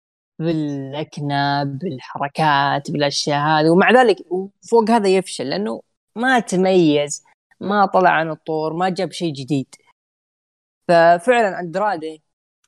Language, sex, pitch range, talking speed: Arabic, female, 150-180 Hz, 110 wpm